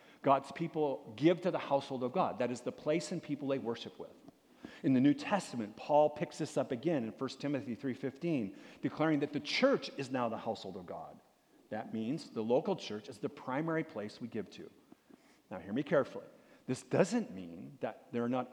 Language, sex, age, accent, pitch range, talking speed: English, male, 50-69, American, 115-155 Hz, 205 wpm